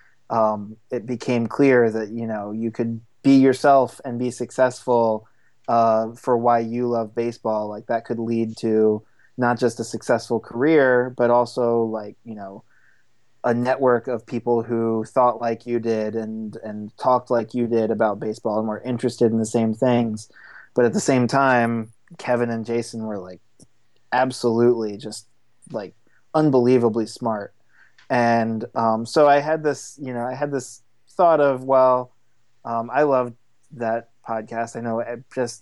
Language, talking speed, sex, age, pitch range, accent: English, 160 wpm, male, 20-39, 115-130 Hz, American